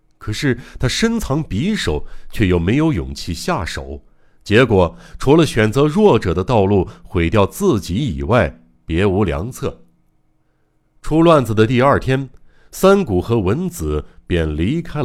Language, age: Chinese, 60-79